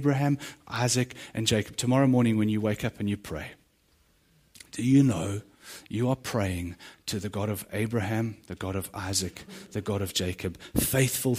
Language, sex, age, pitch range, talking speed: English, male, 30-49, 105-140 Hz, 175 wpm